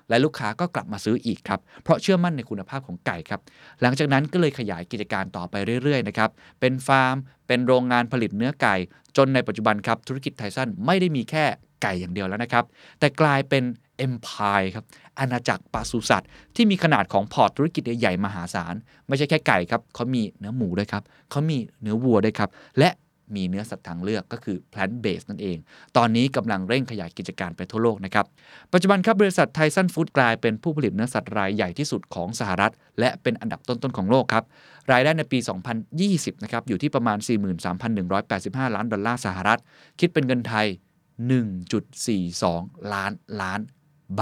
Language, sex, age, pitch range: Thai, male, 20-39, 105-145 Hz